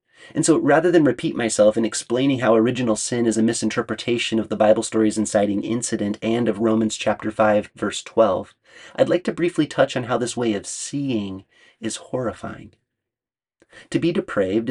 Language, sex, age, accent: English, male, 30-49, American